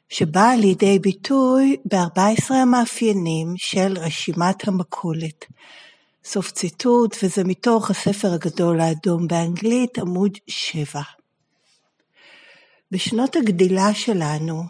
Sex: female